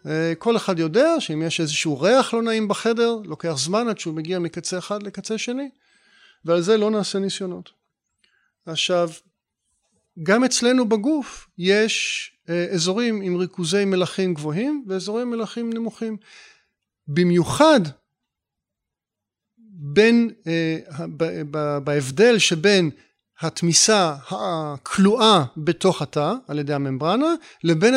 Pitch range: 160-225 Hz